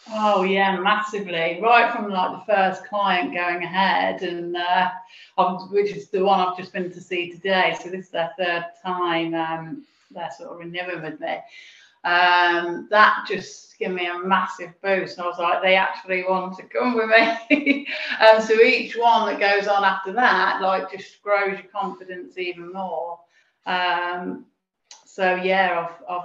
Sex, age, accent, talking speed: female, 30-49, British, 185 wpm